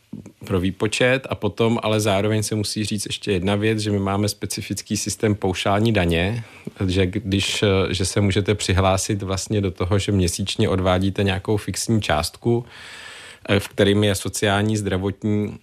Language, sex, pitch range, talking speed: Czech, male, 95-105 Hz, 150 wpm